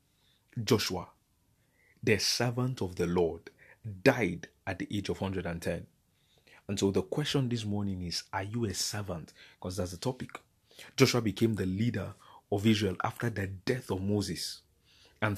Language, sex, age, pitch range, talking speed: English, male, 30-49, 95-120 Hz, 150 wpm